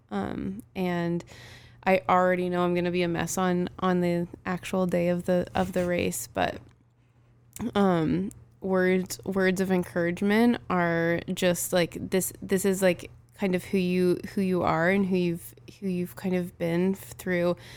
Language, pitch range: English, 170-185 Hz